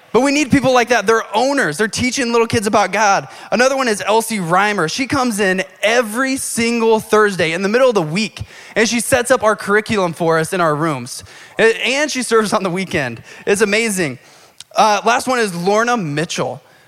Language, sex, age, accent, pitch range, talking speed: English, male, 20-39, American, 175-235 Hz, 200 wpm